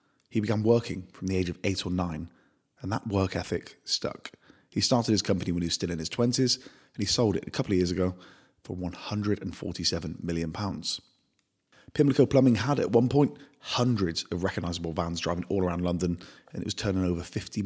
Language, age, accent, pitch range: English, 30-49, British, 90-110 Hz